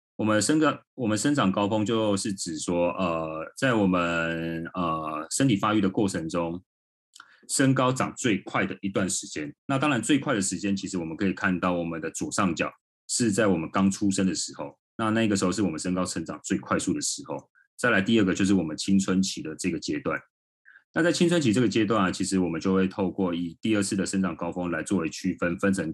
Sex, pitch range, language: male, 85-105 Hz, Chinese